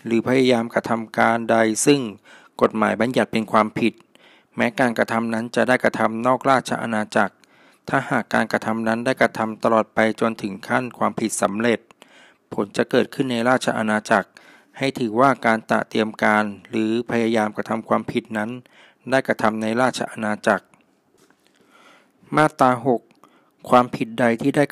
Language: Thai